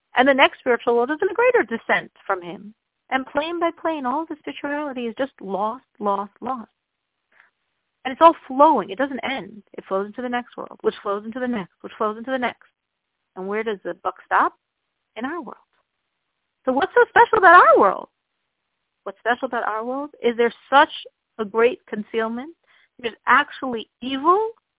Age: 40-59